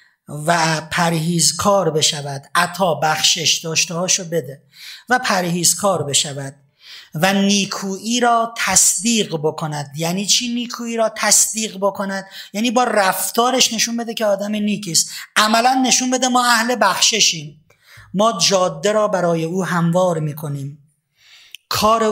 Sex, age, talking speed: male, 30-49, 130 wpm